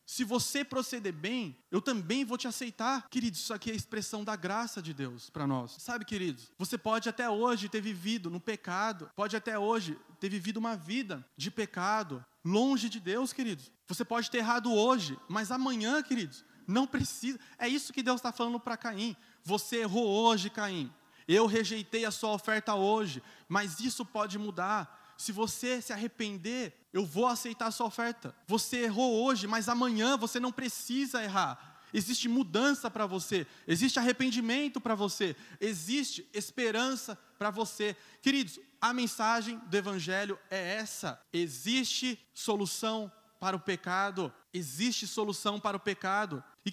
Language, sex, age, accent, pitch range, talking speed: Portuguese, male, 20-39, Brazilian, 190-235 Hz, 160 wpm